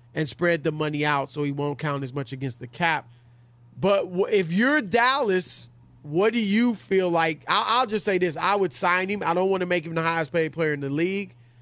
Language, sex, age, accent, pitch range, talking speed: English, male, 30-49, American, 150-205 Hz, 220 wpm